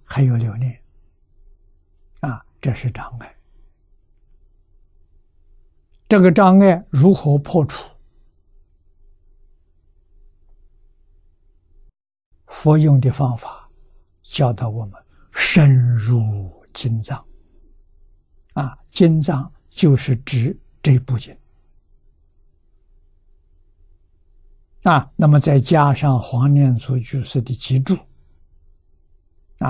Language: Chinese